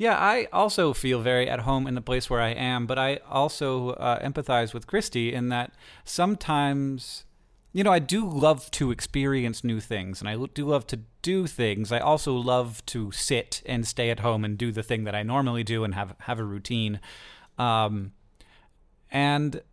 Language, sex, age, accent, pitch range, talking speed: English, male, 30-49, American, 110-135 Hz, 190 wpm